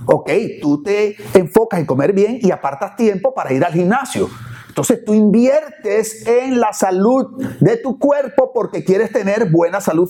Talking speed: 165 wpm